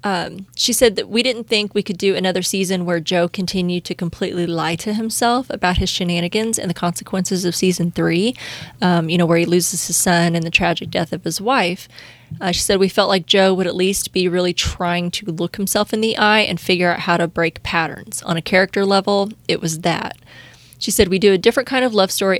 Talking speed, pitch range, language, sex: 235 wpm, 170-205 Hz, English, female